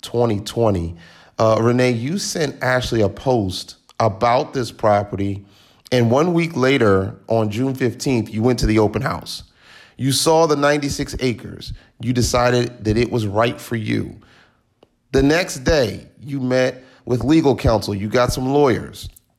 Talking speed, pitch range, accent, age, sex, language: 150 wpm, 110-140 Hz, American, 30-49, male, English